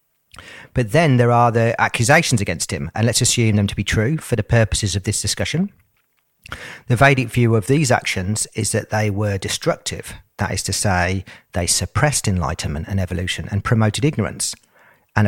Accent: British